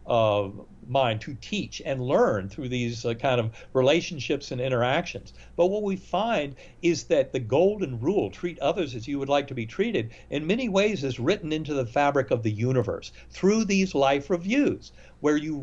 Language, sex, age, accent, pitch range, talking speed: English, male, 60-79, American, 120-170 Hz, 190 wpm